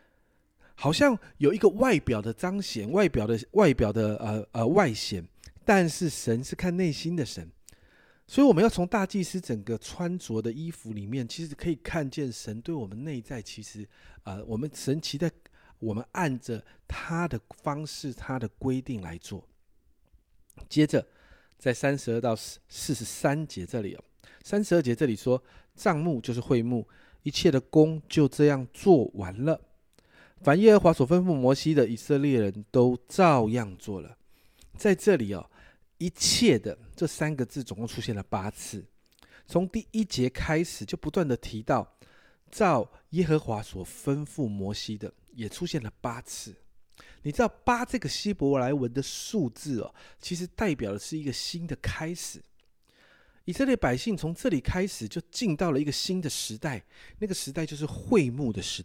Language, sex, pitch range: Chinese, male, 110-170 Hz